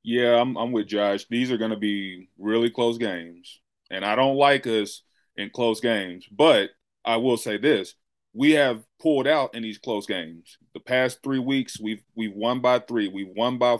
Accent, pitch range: American, 105-120 Hz